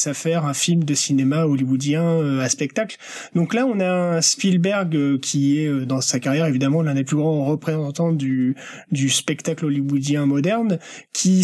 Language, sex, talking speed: French, male, 185 wpm